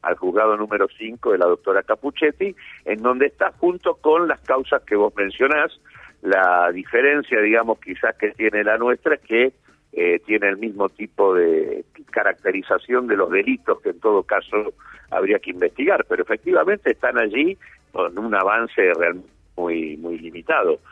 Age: 50-69